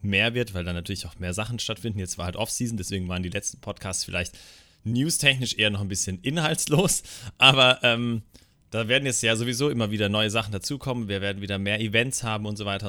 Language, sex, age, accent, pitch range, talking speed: German, male, 30-49, German, 90-110 Hz, 215 wpm